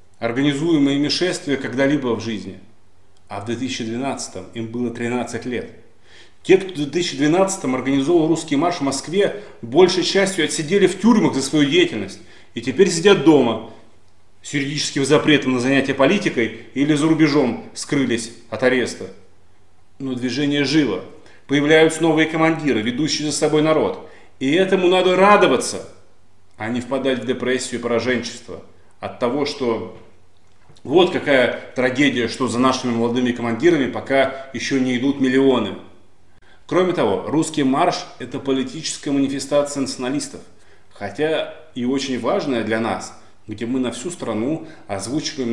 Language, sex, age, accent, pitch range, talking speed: Russian, male, 30-49, native, 115-155 Hz, 135 wpm